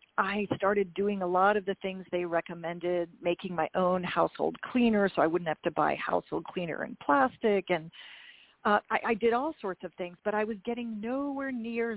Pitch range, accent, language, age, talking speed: 180-230 Hz, American, English, 40-59, 200 wpm